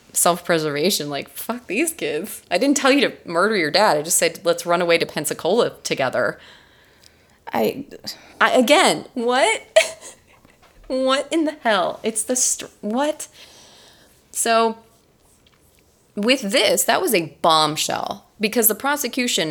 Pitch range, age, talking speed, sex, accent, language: 160-230 Hz, 30-49, 135 wpm, female, American, English